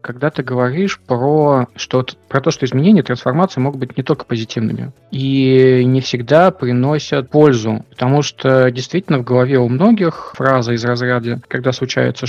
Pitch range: 125-155 Hz